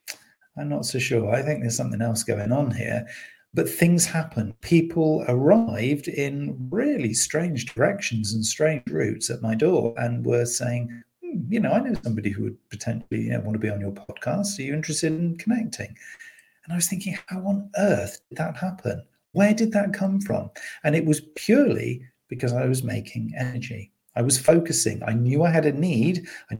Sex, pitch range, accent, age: male, 115-165 Hz, British, 40-59